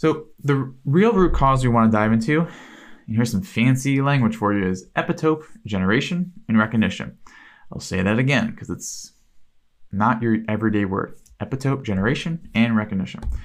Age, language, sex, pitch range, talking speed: 20-39, English, male, 105-155 Hz, 160 wpm